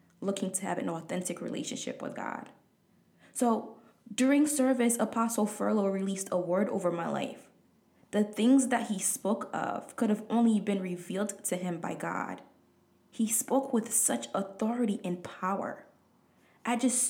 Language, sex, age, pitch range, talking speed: English, female, 20-39, 185-230 Hz, 150 wpm